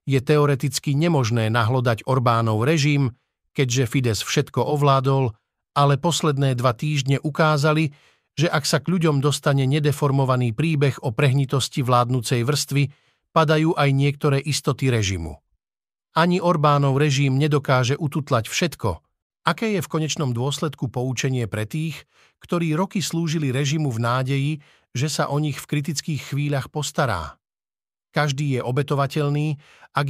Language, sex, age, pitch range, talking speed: Slovak, male, 50-69, 130-150 Hz, 130 wpm